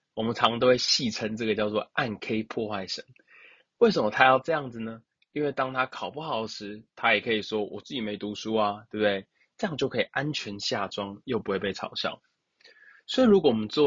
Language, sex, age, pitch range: Chinese, male, 20-39, 105-140 Hz